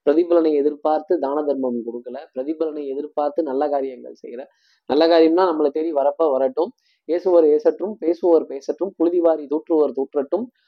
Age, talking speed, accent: 20-39, 130 wpm, native